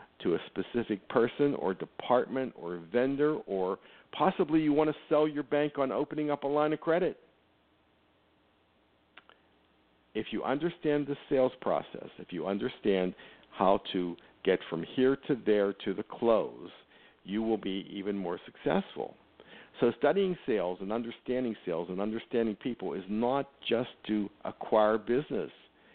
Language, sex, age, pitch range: English, male, 60-79, 95-140 Hz